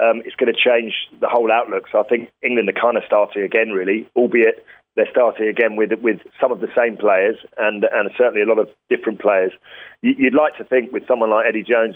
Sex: male